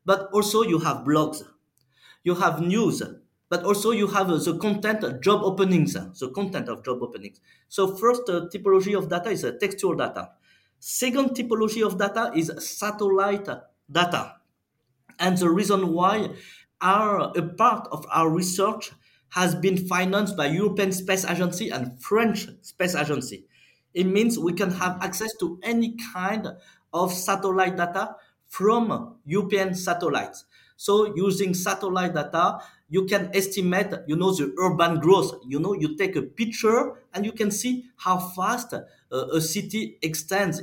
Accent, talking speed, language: French, 155 wpm, English